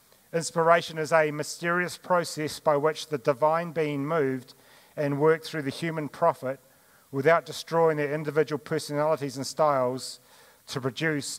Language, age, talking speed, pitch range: English, 40-59, 135 wpm, 135-170 Hz